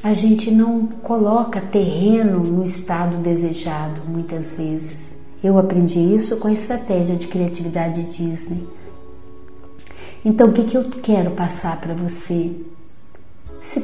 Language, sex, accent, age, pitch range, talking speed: Portuguese, female, Brazilian, 50-69, 180-240 Hz, 125 wpm